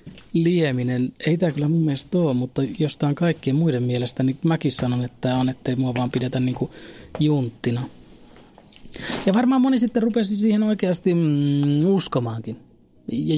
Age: 30-49